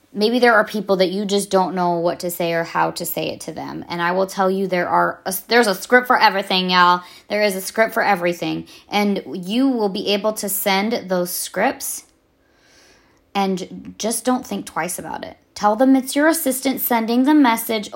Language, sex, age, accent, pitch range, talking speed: English, female, 20-39, American, 195-265 Hz, 210 wpm